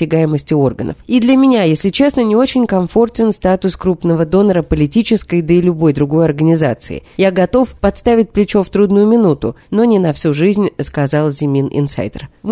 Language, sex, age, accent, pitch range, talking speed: Russian, female, 20-39, native, 160-230 Hz, 160 wpm